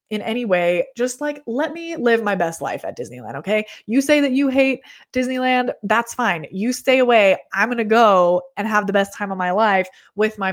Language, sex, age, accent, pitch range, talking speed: English, female, 20-39, American, 185-250 Hz, 220 wpm